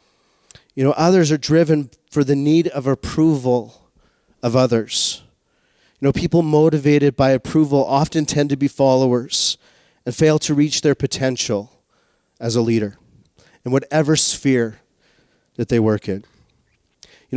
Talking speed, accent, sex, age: 140 wpm, American, male, 30-49